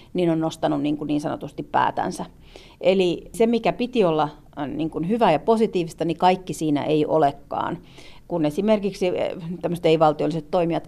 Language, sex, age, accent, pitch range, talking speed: Finnish, female, 40-59, native, 155-185 Hz, 140 wpm